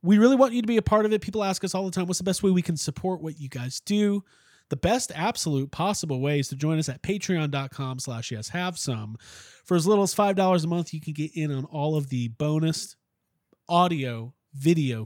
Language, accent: English, American